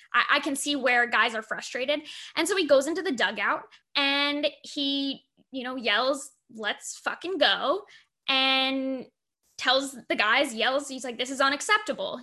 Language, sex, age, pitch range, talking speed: English, female, 10-29, 260-310 Hz, 155 wpm